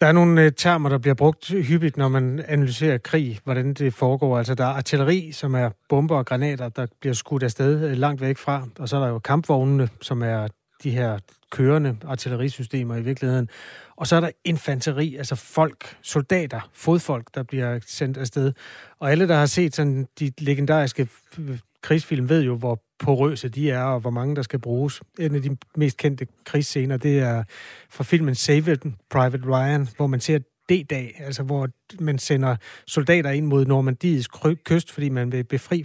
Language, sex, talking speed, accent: Danish, male, 185 wpm, native